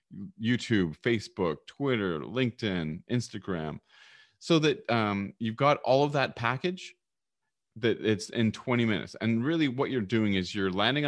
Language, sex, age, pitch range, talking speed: English, male, 30-49, 95-130 Hz, 145 wpm